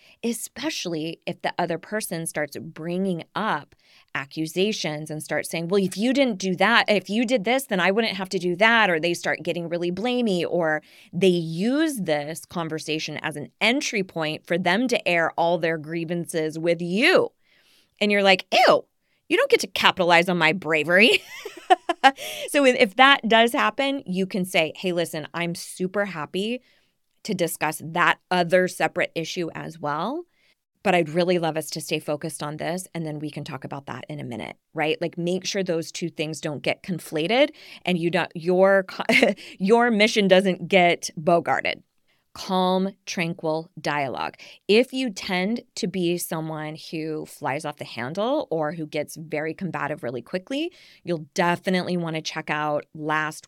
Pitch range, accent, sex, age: 155-200 Hz, American, female, 20-39